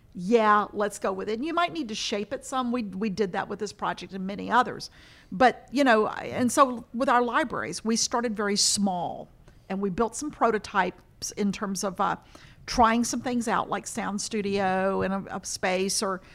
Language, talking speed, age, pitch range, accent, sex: English, 205 wpm, 50-69, 195-245 Hz, American, female